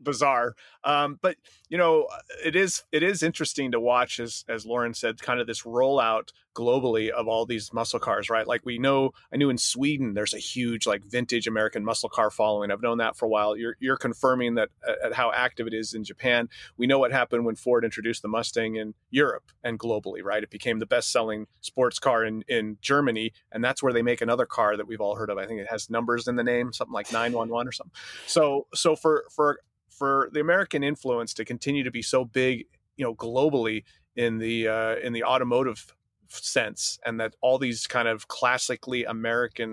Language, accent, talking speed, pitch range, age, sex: English, American, 210 wpm, 110-130 Hz, 30-49, male